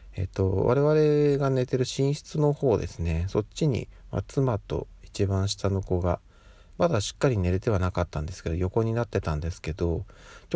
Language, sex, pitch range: Japanese, male, 85-105 Hz